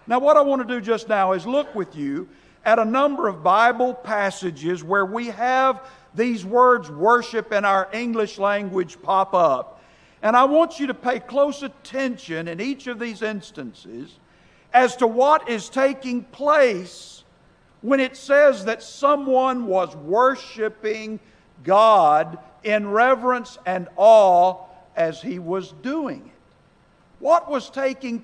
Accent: American